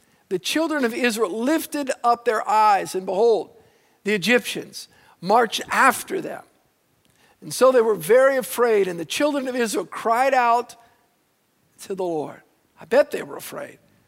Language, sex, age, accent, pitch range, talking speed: English, male, 50-69, American, 210-275 Hz, 155 wpm